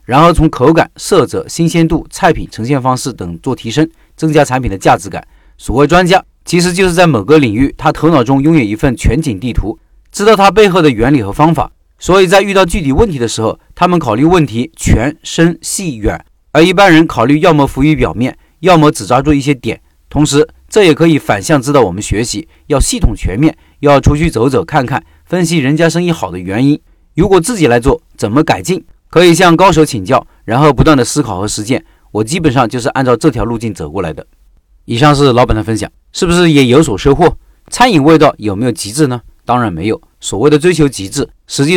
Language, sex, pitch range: Chinese, male, 115-165 Hz